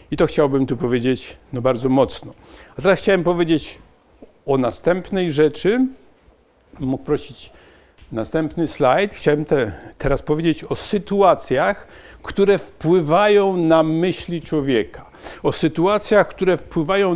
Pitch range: 150-190 Hz